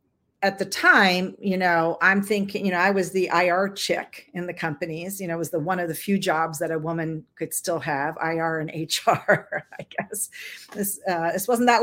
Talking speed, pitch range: 220 wpm, 165-195 Hz